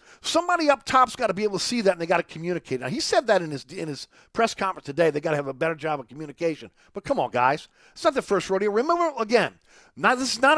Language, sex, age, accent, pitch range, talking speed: English, male, 40-59, American, 180-285 Hz, 285 wpm